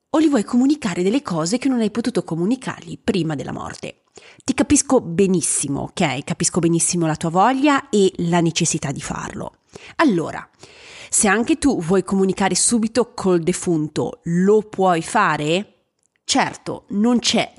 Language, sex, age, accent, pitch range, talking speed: Italian, female, 30-49, native, 170-245 Hz, 145 wpm